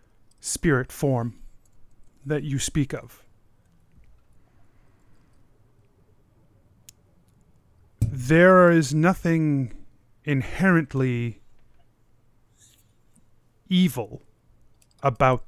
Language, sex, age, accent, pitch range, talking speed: English, male, 30-49, American, 115-145 Hz, 45 wpm